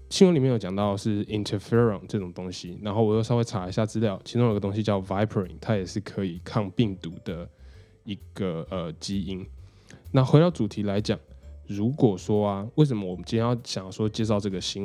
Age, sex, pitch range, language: 10-29, male, 95-115 Hz, Chinese